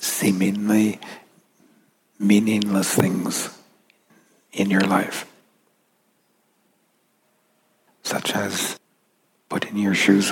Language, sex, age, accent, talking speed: English, male, 60-79, American, 65 wpm